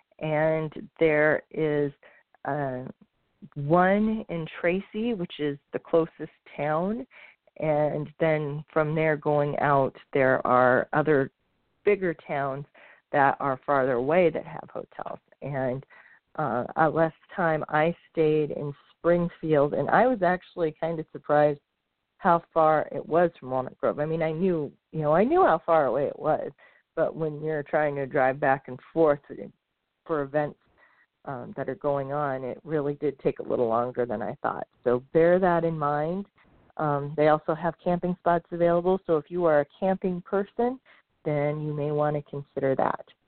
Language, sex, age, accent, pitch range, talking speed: English, female, 40-59, American, 145-170 Hz, 165 wpm